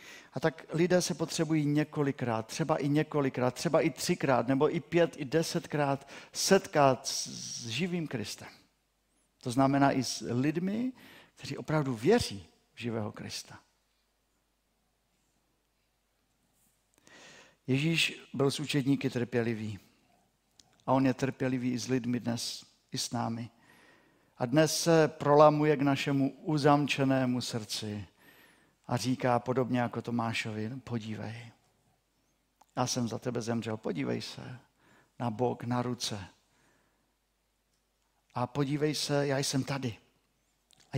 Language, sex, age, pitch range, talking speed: Czech, male, 50-69, 120-155 Hz, 115 wpm